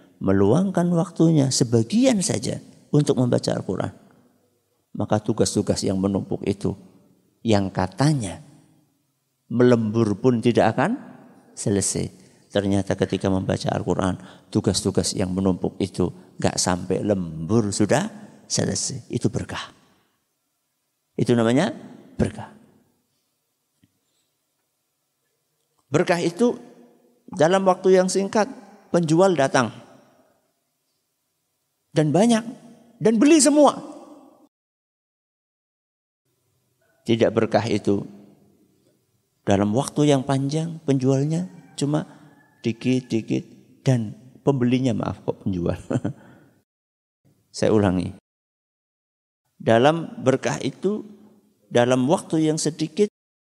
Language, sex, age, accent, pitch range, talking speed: Indonesian, male, 50-69, native, 100-170 Hz, 85 wpm